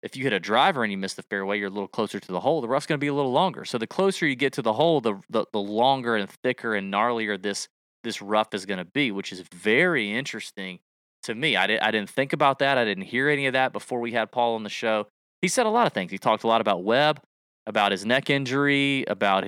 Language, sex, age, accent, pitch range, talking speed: English, male, 30-49, American, 105-140 Hz, 280 wpm